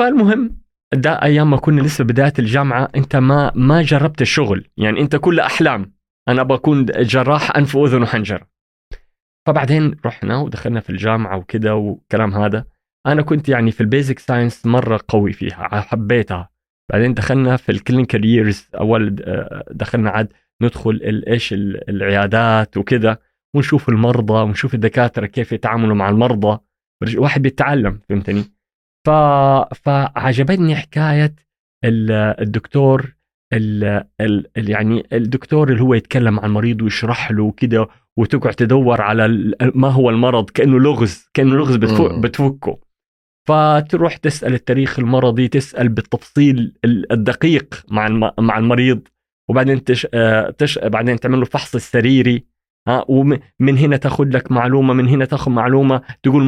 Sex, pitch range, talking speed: male, 110-140 Hz, 125 wpm